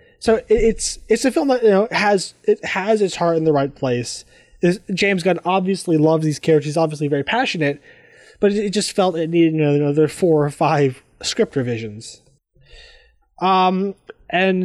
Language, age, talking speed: English, 20-39, 175 wpm